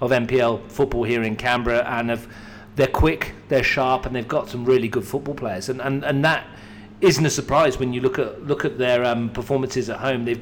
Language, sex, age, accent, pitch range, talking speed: English, male, 40-59, British, 115-135 Hz, 215 wpm